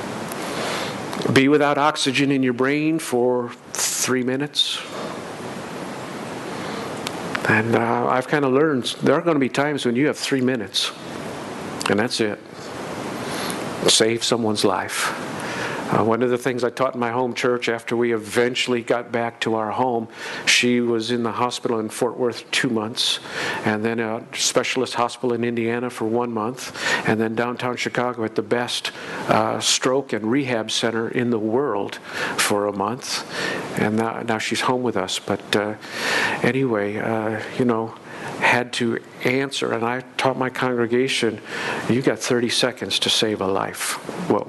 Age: 50-69